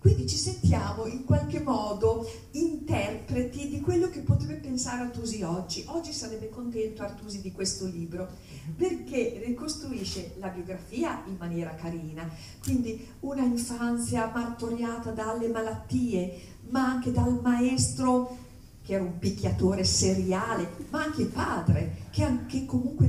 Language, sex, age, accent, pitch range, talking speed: Italian, female, 50-69, native, 175-250 Hz, 125 wpm